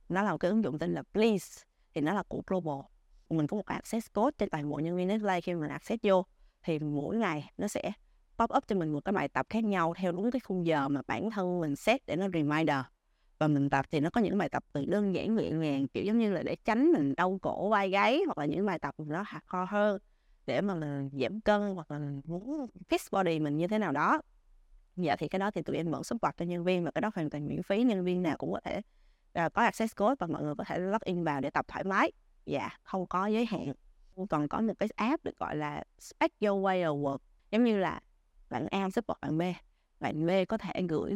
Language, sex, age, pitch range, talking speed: Vietnamese, female, 20-39, 160-215 Hz, 255 wpm